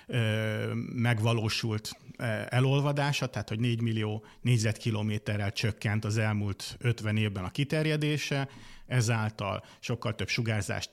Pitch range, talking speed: 105-130 Hz, 100 wpm